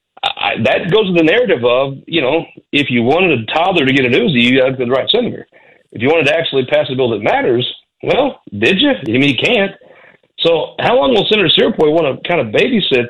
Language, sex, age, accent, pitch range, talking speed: English, male, 40-59, American, 135-195 Hz, 245 wpm